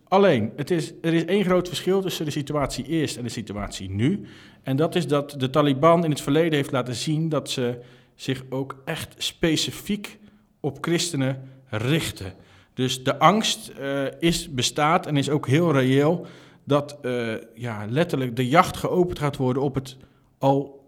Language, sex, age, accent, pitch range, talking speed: Dutch, male, 40-59, Dutch, 120-155 Hz, 170 wpm